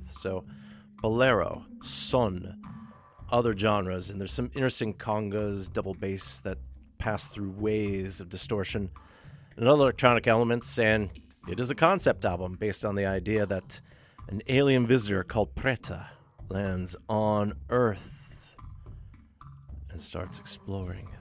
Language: English